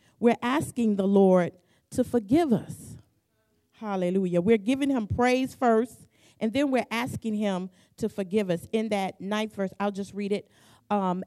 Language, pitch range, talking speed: English, 175-245 Hz, 160 wpm